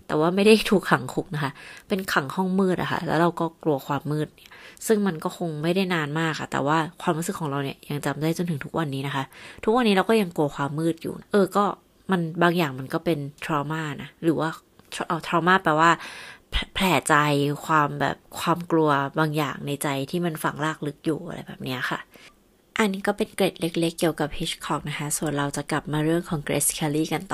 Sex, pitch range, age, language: female, 150-185 Hz, 20-39, Thai